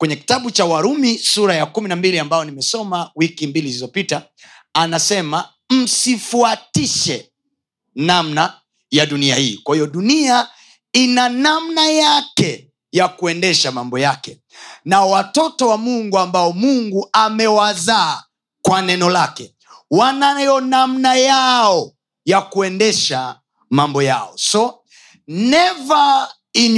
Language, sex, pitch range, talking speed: Swahili, male, 180-255 Hz, 110 wpm